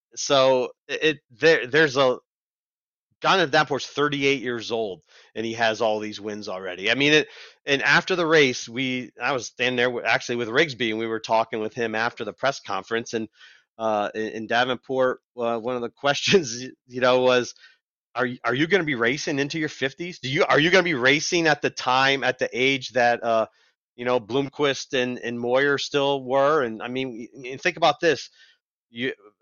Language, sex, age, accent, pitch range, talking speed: English, male, 30-49, American, 120-160 Hz, 200 wpm